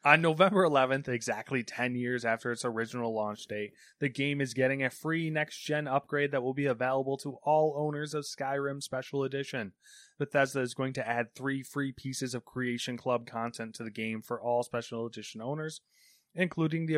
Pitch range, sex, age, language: 115-145 Hz, male, 20-39, English